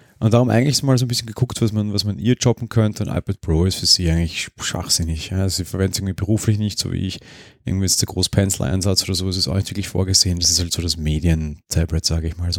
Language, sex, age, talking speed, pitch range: German, male, 30-49, 260 wpm, 90-105 Hz